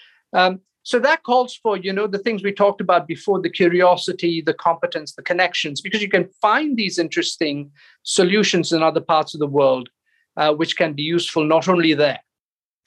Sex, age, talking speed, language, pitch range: male, 50-69, 185 wpm, English, 160-205 Hz